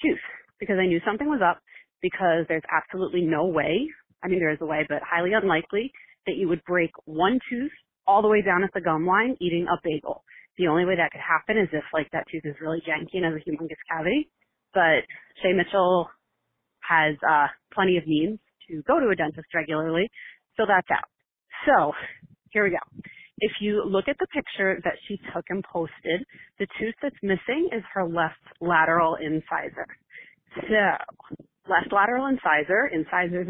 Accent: American